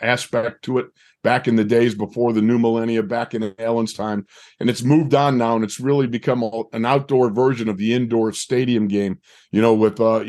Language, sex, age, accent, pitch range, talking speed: English, male, 50-69, American, 110-135 Hz, 215 wpm